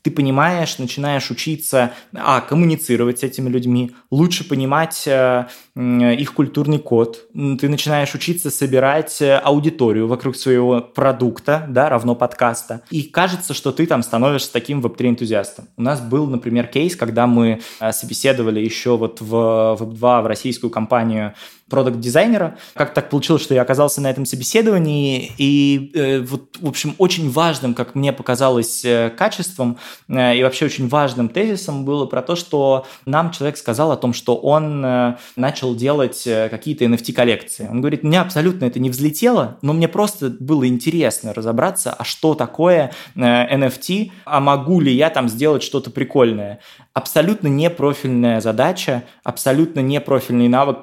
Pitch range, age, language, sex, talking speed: 120-150 Hz, 20-39, Russian, male, 155 wpm